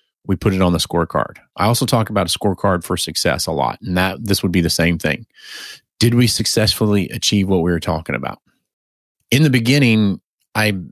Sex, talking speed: male, 205 wpm